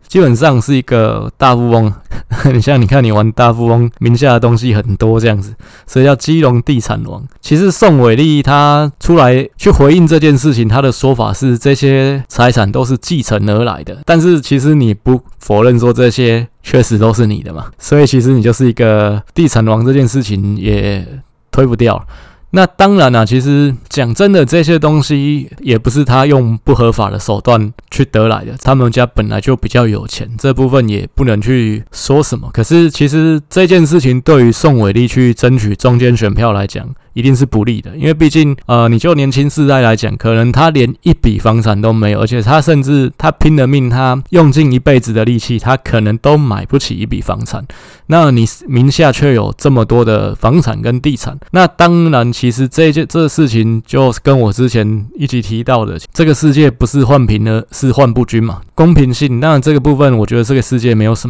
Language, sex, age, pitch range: Chinese, male, 20-39, 115-145 Hz